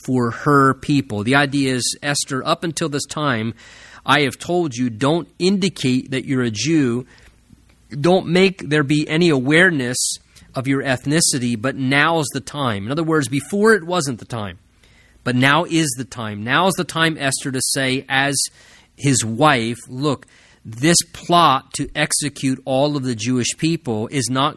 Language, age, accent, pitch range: English, 30-49, American, 115-145 Hz